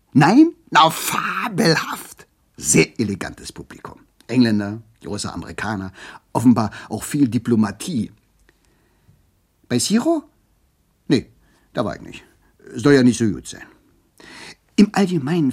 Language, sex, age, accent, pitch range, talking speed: German, male, 50-69, German, 115-160 Hz, 110 wpm